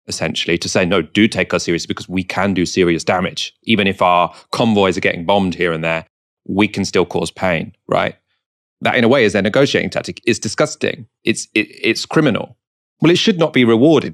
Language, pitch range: English, 85-105 Hz